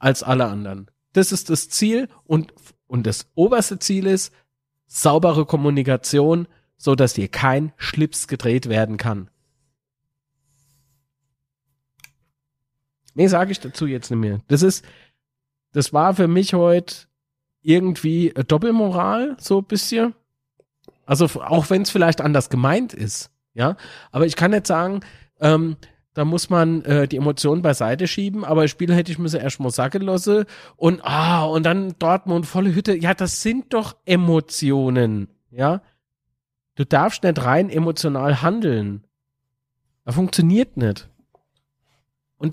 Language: German